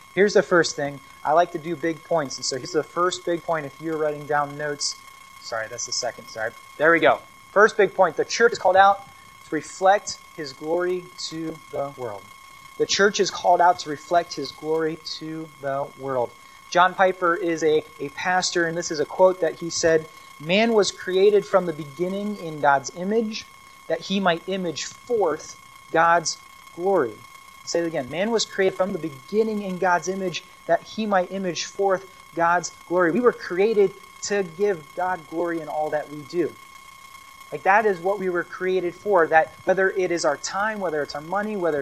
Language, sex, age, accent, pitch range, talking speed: English, male, 30-49, American, 160-215 Hz, 195 wpm